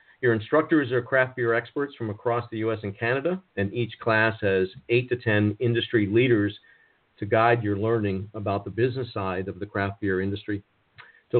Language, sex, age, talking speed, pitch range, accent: English, male, 50-69, 185 wpm, 105-130 Hz, American